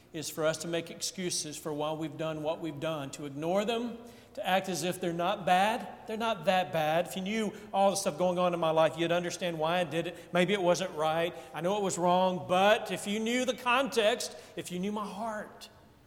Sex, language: male, English